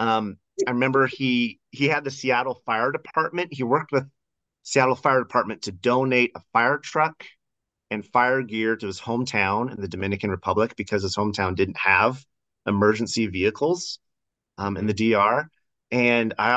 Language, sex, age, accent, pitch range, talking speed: English, male, 30-49, American, 100-135 Hz, 160 wpm